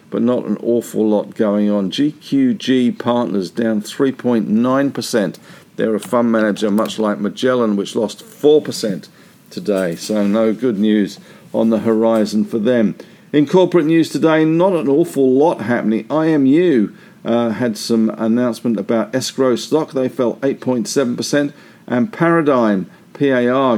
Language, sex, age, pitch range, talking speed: English, male, 50-69, 115-160 Hz, 135 wpm